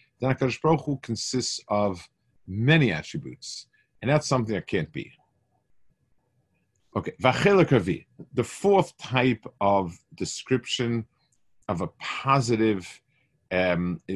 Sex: male